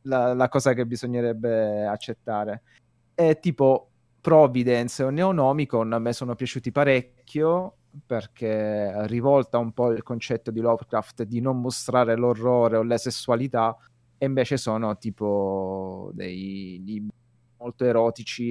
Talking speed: 125 wpm